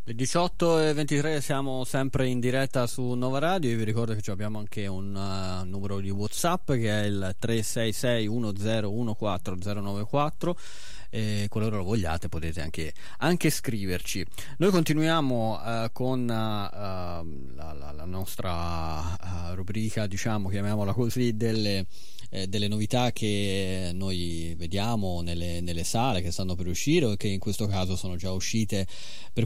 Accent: native